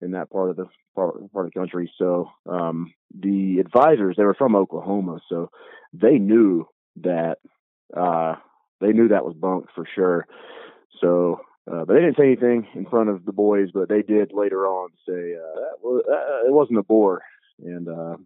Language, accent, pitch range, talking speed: English, American, 90-105 Hz, 185 wpm